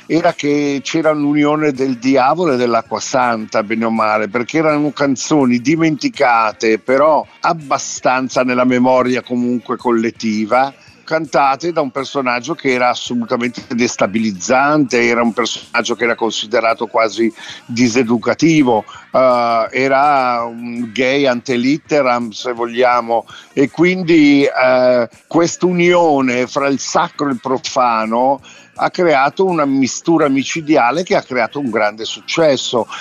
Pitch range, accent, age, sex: 120-145 Hz, native, 50-69, male